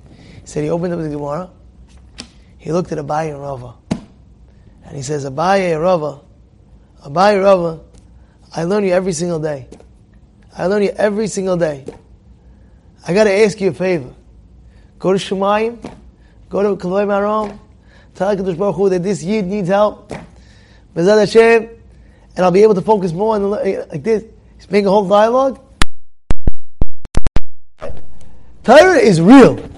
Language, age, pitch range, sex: English, 20-39, 170-220 Hz, male